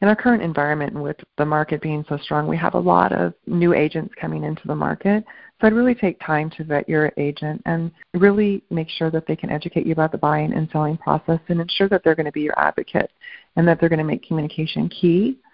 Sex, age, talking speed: female, 40-59, 240 wpm